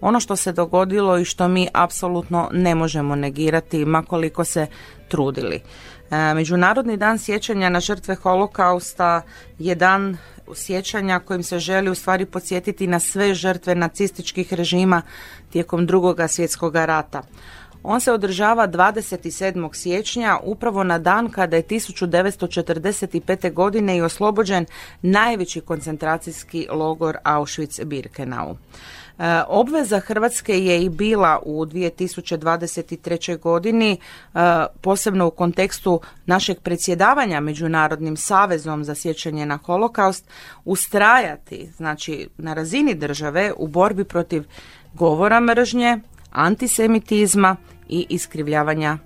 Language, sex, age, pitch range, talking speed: Croatian, female, 30-49, 165-195 Hz, 110 wpm